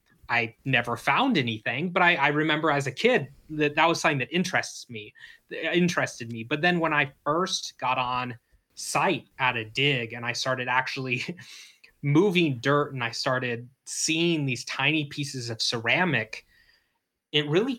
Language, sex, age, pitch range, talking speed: English, male, 20-39, 120-150 Hz, 160 wpm